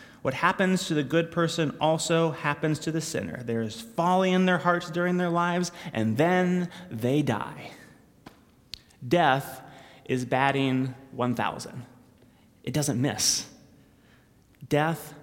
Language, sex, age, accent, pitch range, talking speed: English, male, 30-49, American, 130-175 Hz, 120 wpm